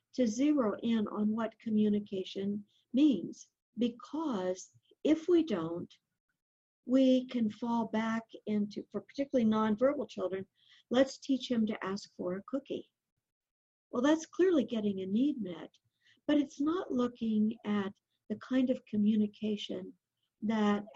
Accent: American